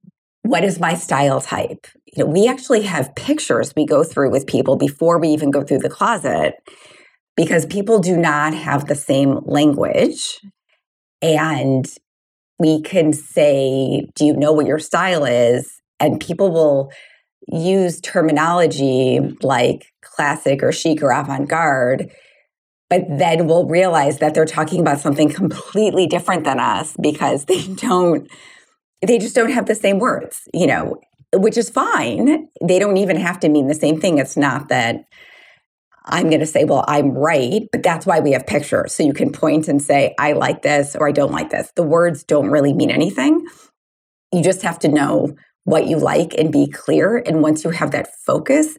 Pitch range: 150-200 Hz